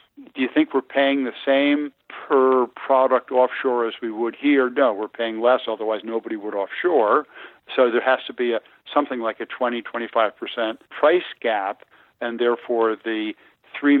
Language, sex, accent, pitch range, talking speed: English, male, American, 115-135 Hz, 165 wpm